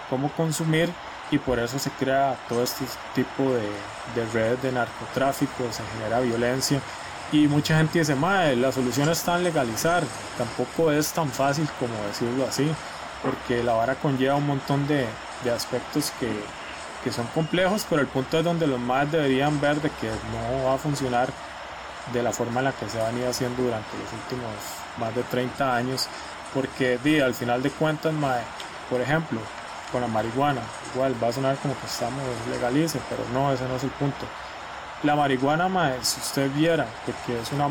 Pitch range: 120-145 Hz